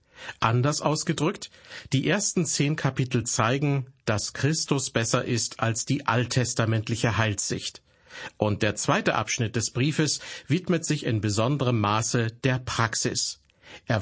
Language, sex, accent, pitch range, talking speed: German, male, German, 115-140 Hz, 125 wpm